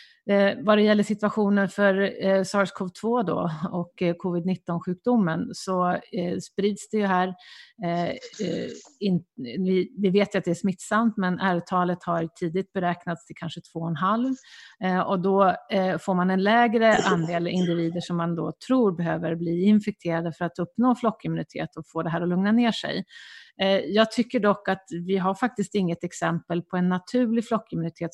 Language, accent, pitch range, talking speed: Swedish, native, 170-205 Hz, 175 wpm